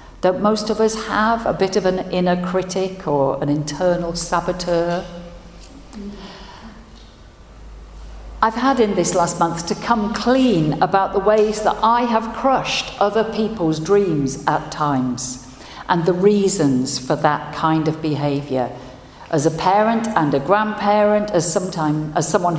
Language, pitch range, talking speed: English, 150-215 Hz, 140 wpm